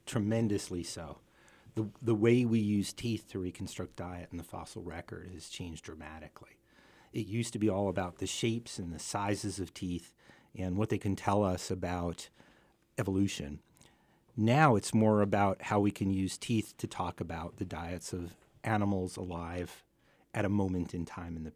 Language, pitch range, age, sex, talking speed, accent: English, 90-110 Hz, 40-59, male, 175 wpm, American